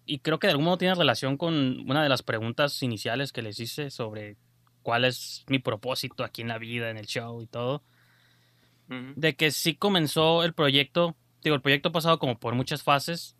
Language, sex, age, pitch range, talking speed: Spanish, male, 20-39, 110-135 Hz, 205 wpm